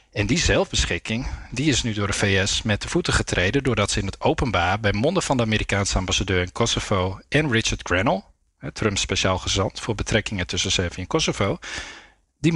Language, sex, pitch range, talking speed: Dutch, male, 100-140 Hz, 185 wpm